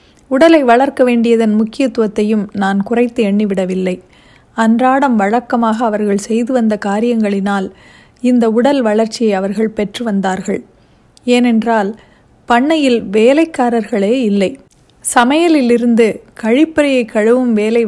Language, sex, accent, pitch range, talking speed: Tamil, female, native, 210-250 Hz, 90 wpm